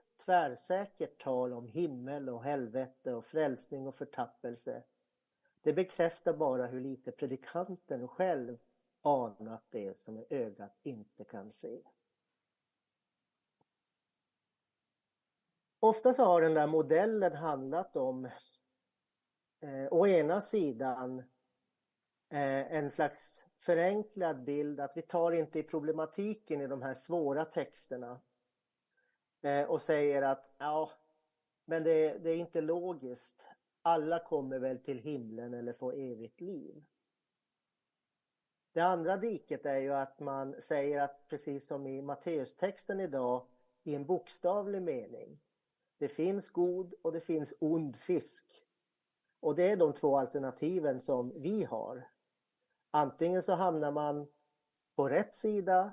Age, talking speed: 50-69, 120 wpm